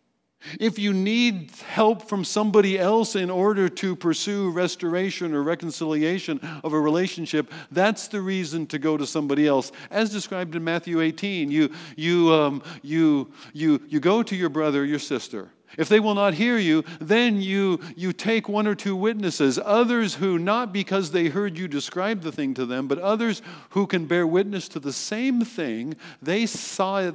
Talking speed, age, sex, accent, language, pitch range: 180 wpm, 50-69, male, American, English, 140-190 Hz